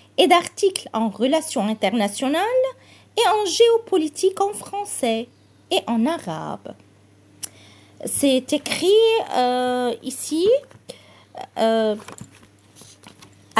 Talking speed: 80 wpm